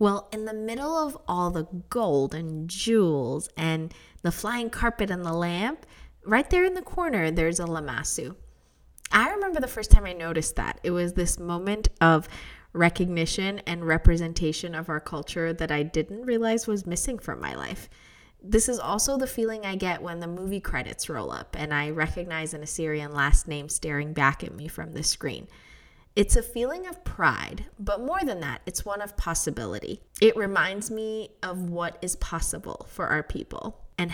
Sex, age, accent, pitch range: female, 20-39, American, 160-210 Hz